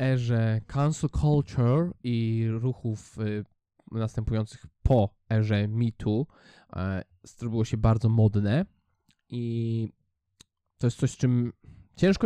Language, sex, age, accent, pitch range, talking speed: Polish, male, 20-39, native, 100-135 Hz, 110 wpm